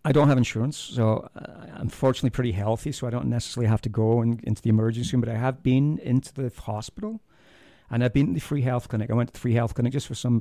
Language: English